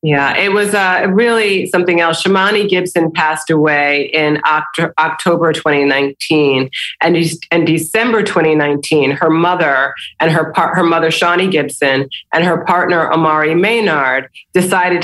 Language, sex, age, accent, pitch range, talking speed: English, female, 30-49, American, 160-190 Hz, 135 wpm